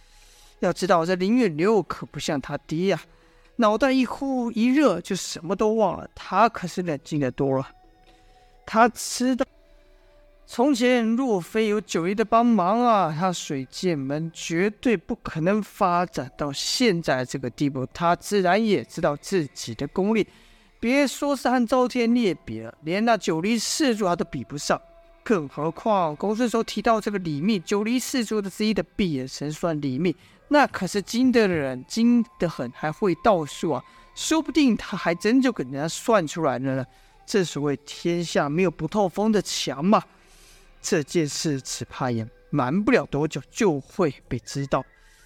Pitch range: 155-230 Hz